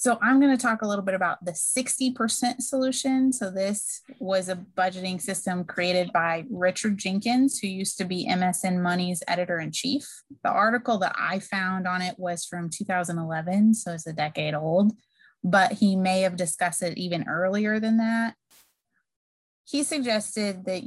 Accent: American